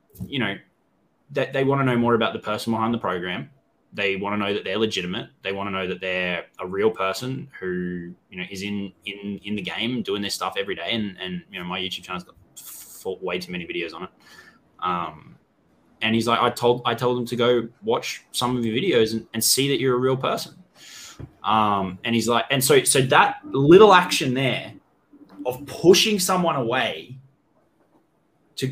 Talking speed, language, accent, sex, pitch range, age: 205 wpm, English, Australian, male, 110-155 Hz, 10-29